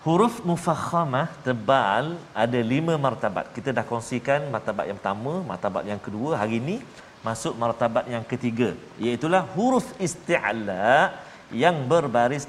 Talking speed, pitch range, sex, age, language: 125 wpm, 115-175 Hz, male, 40-59, Malayalam